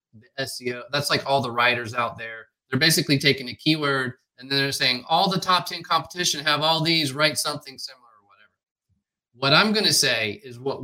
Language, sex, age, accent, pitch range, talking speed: English, male, 30-49, American, 130-175 Hz, 210 wpm